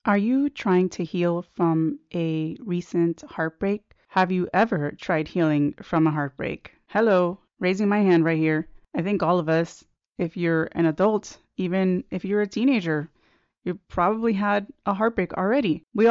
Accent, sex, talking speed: American, female, 165 wpm